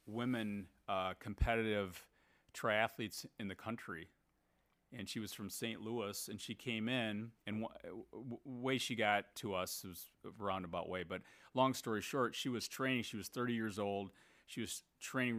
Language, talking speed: English, 170 wpm